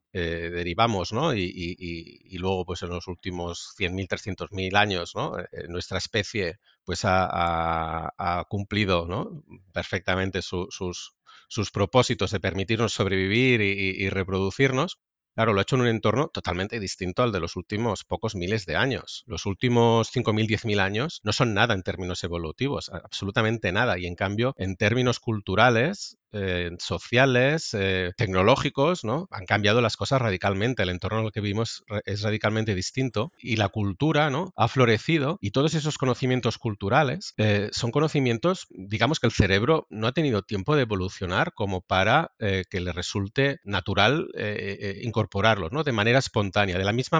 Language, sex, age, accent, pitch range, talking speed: Spanish, male, 40-59, Spanish, 95-120 Hz, 165 wpm